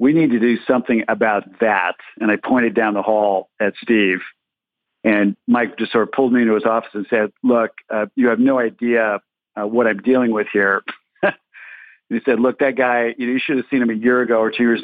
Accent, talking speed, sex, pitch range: American, 235 wpm, male, 110-120 Hz